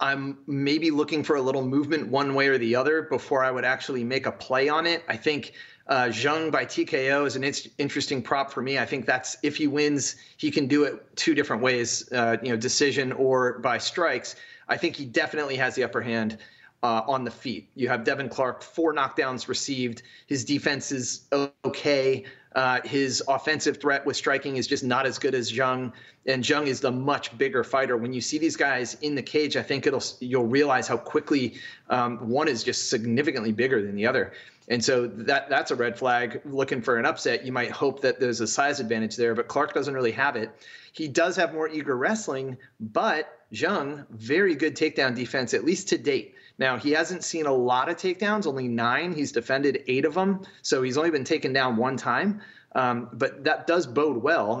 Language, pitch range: English, 125-150 Hz